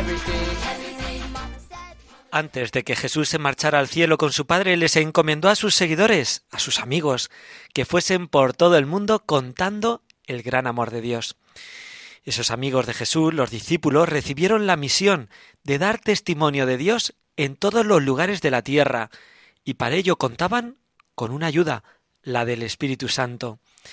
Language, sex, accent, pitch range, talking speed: Spanish, male, Spanish, 130-180 Hz, 160 wpm